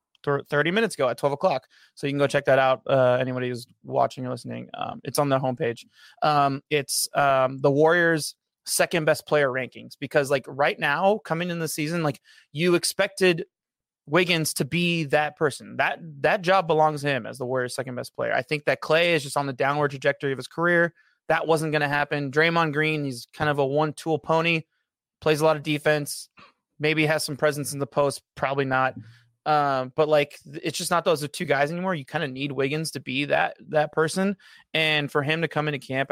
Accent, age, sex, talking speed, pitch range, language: American, 20-39, male, 215 wpm, 140-160 Hz, English